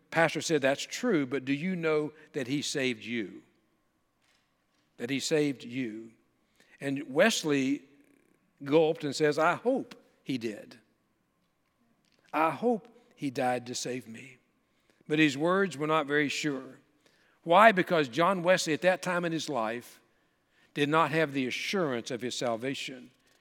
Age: 60-79